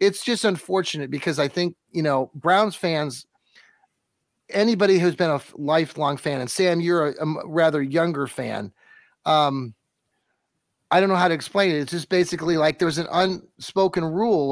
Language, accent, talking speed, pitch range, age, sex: English, American, 165 wpm, 145-185 Hz, 30-49, male